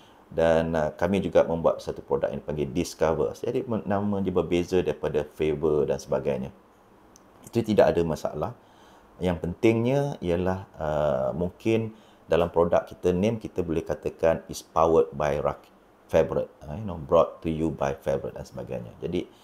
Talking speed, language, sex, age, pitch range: 150 wpm, Malay, male, 30-49, 80-100 Hz